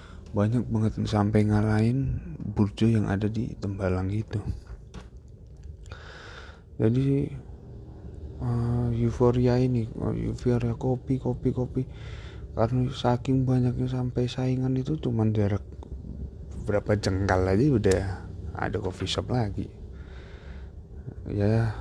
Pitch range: 100-120 Hz